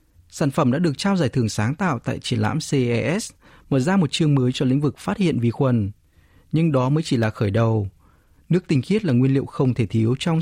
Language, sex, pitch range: Vietnamese, male, 110-160 Hz